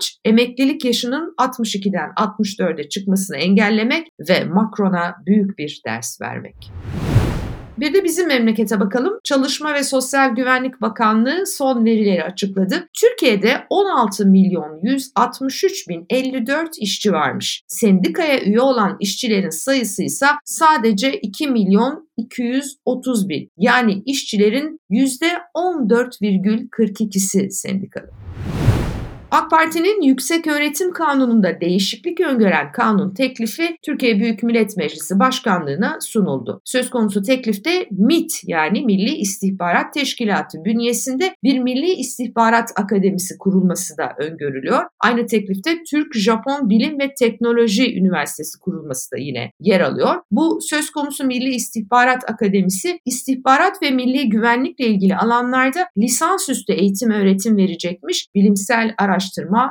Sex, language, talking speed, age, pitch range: female, Turkish, 110 wpm, 60-79, 195-270 Hz